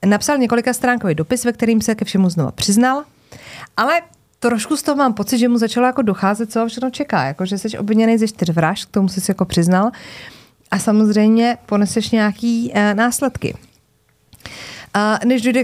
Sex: female